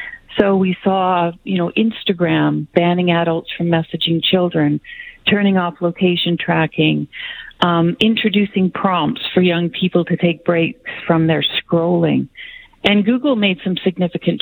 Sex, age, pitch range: female, 50-69, 165-195 Hz